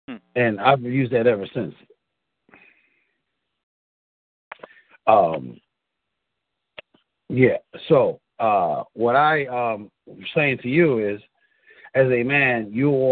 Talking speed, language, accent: 95 wpm, English, American